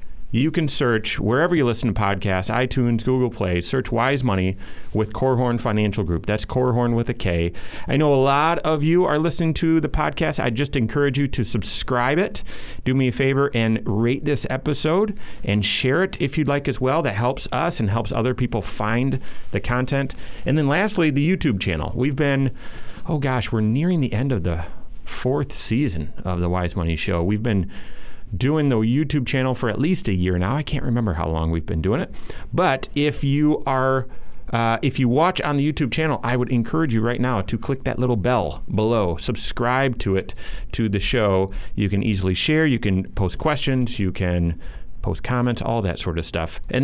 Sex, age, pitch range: male, 30-49, 105-140 Hz